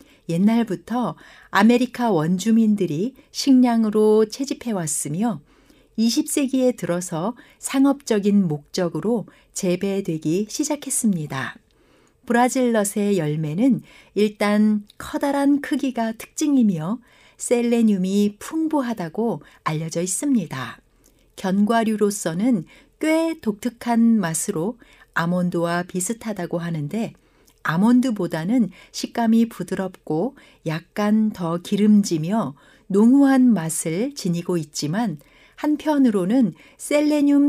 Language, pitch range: Korean, 180-250 Hz